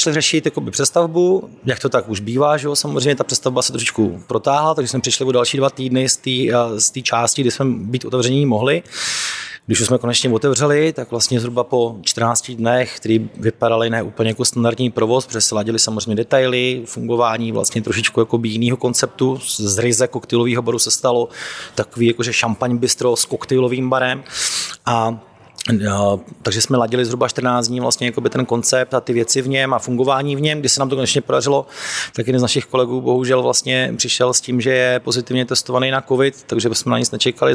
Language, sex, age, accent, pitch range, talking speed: Czech, male, 30-49, native, 120-135 Hz, 190 wpm